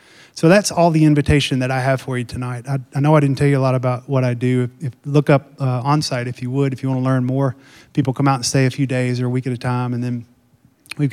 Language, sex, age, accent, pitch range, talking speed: English, male, 30-49, American, 125-150 Hz, 295 wpm